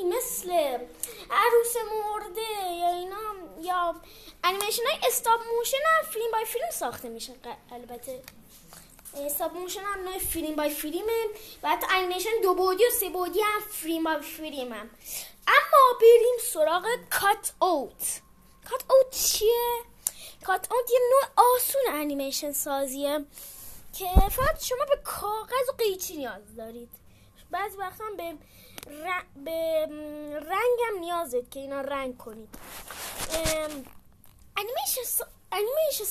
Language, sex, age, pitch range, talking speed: Persian, female, 20-39, 310-440 Hz, 125 wpm